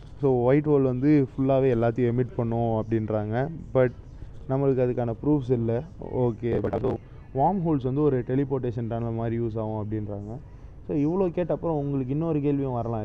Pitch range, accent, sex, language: 115-140 Hz, native, male, Tamil